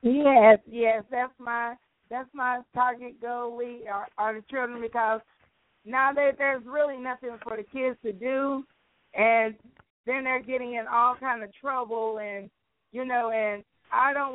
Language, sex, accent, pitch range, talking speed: English, female, American, 210-240 Hz, 160 wpm